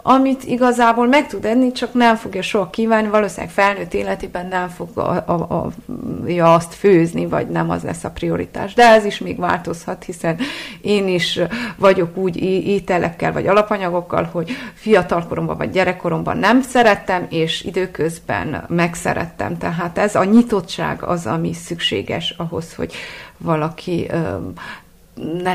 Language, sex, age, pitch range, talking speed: Hungarian, female, 30-49, 170-215 Hz, 135 wpm